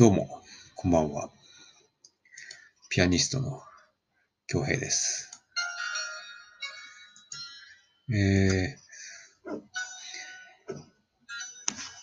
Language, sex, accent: Japanese, male, native